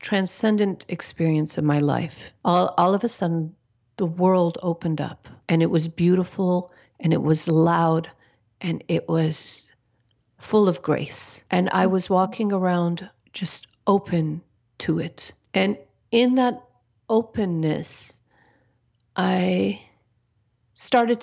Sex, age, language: female, 50-69, English